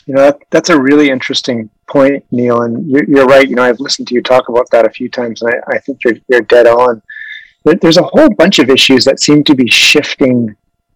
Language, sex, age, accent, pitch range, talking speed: English, male, 30-49, American, 120-145 Hz, 245 wpm